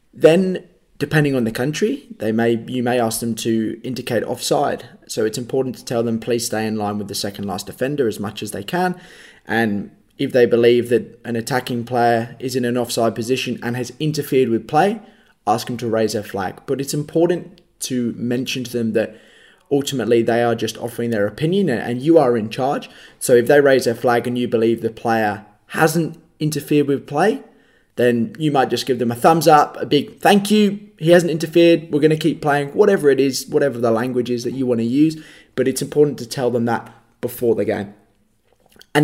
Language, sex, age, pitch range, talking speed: English, male, 20-39, 115-150 Hz, 210 wpm